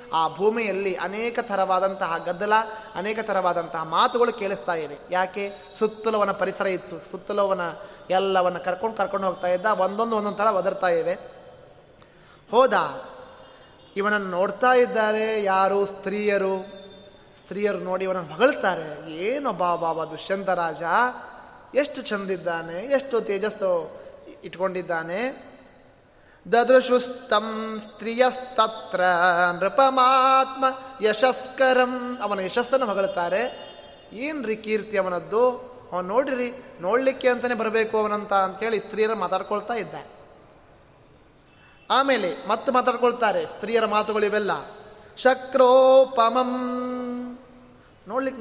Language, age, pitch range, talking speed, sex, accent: Kannada, 20-39, 185-245 Hz, 90 wpm, male, native